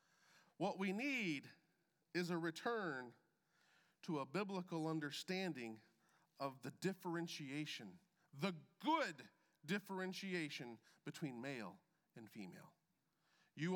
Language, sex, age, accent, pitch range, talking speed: English, male, 40-59, American, 155-195 Hz, 90 wpm